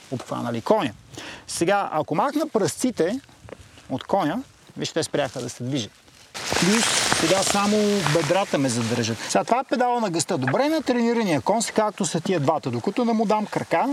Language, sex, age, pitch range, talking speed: Bulgarian, male, 30-49, 140-195 Hz, 170 wpm